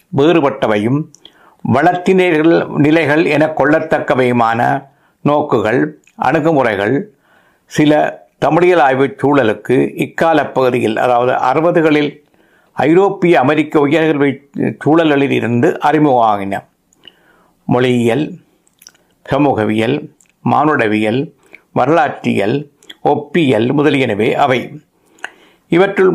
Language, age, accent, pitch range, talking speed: Tamil, 60-79, native, 135-160 Hz, 65 wpm